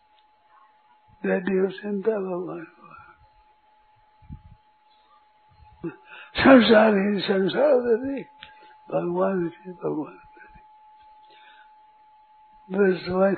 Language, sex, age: Hindi, male, 60-79